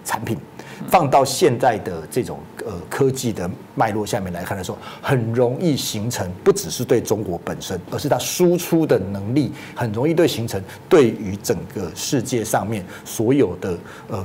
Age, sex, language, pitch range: 40-59, male, Chinese, 105-130 Hz